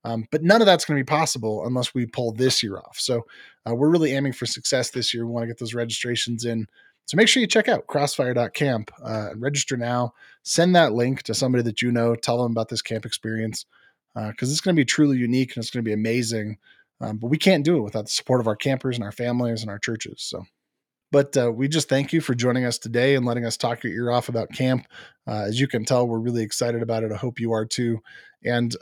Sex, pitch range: male, 115-145 Hz